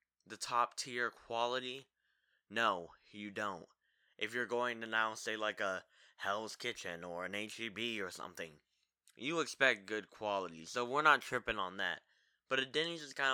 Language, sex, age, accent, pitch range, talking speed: English, male, 10-29, American, 110-140 Hz, 165 wpm